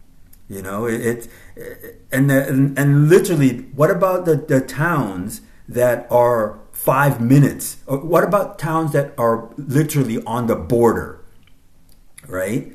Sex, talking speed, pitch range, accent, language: male, 125 wpm, 90-130 Hz, American, English